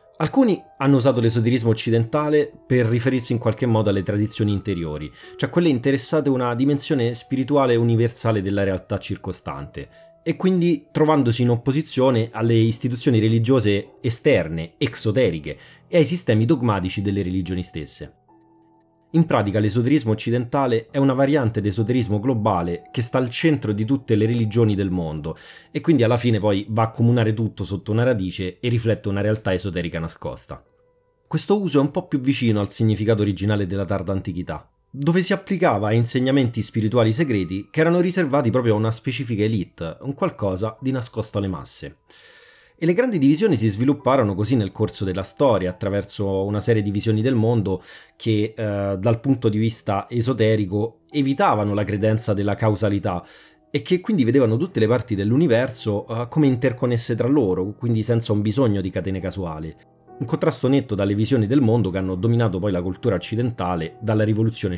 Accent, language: native, Italian